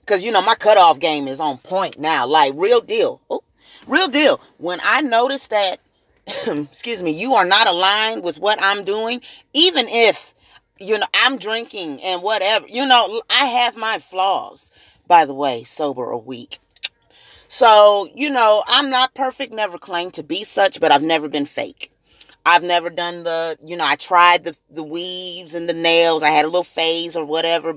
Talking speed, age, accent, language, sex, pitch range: 190 wpm, 30-49, American, English, female, 155-255 Hz